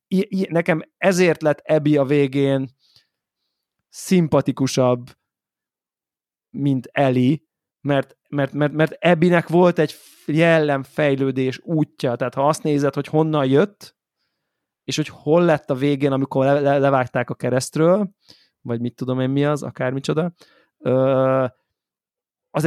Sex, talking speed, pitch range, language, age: male, 115 wpm, 130-160 Hz, Hungarian, 30-49